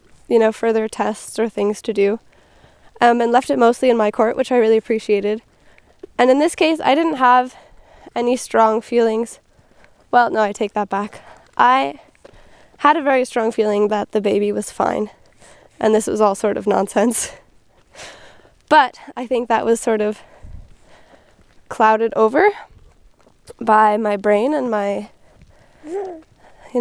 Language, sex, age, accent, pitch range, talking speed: English, female, 10-29, American, 215-255 Hz, 155 wpm